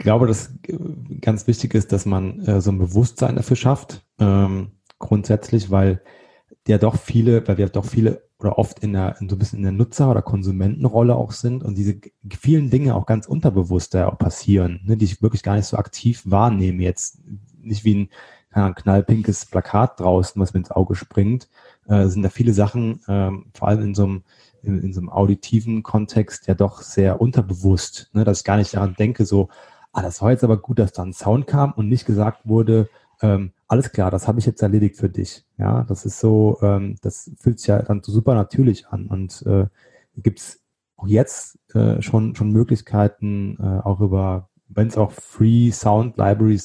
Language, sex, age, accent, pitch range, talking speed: German, male, 30-49, German, 100-115 Hz, 200 wpm